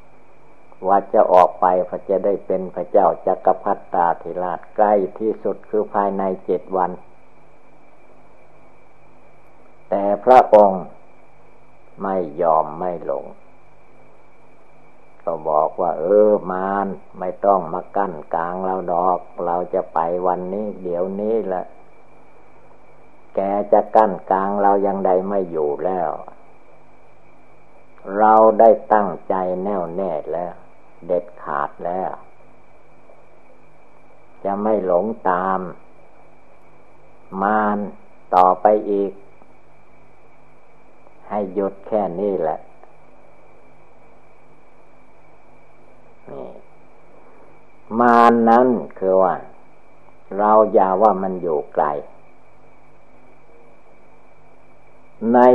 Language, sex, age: Thai, male, 60-79